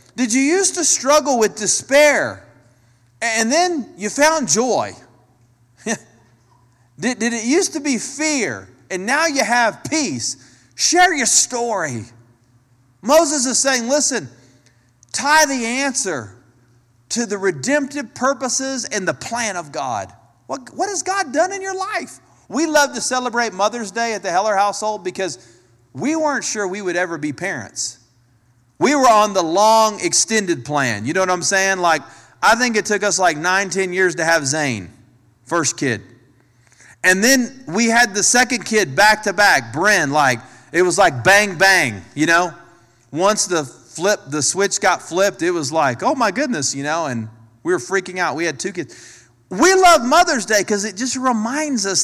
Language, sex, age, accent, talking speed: English, male, 40-59, American, 170 wpm